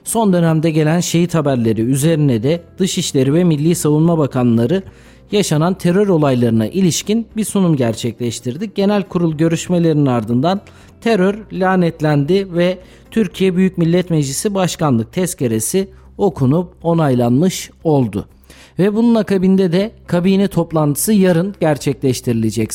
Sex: male